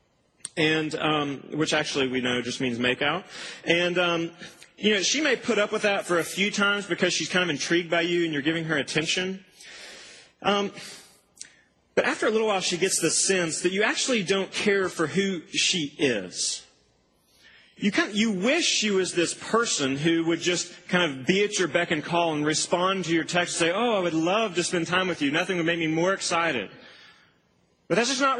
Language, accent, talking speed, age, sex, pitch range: English, American, 215 wpm, 30-49, male, 155-200 Hz